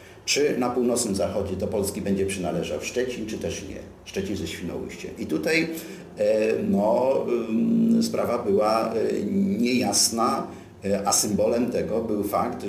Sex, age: male, 40-59